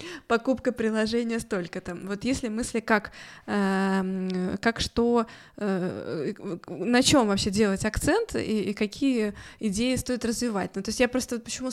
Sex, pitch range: female, 205-235 Hz